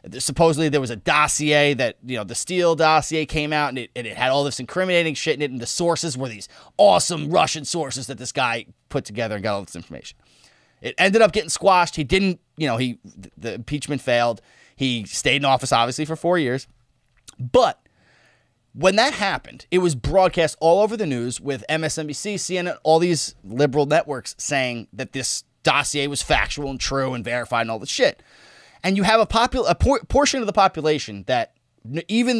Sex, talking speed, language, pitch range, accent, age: male, 200 wpm, English, 125-170 Hz, American, 30-49